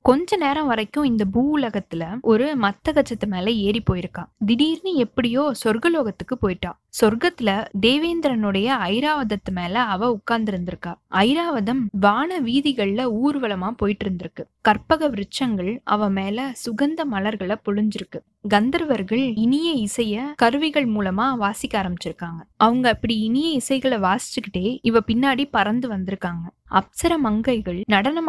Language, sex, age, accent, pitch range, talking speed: Tamil, female, 20-39, native, 205-275 Hz, 115 wpm